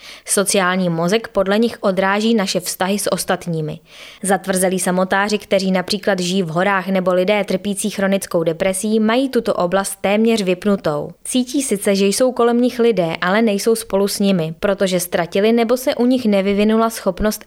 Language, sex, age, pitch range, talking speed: Czech, female, 20-39, 180-220 Hz, 160 wpm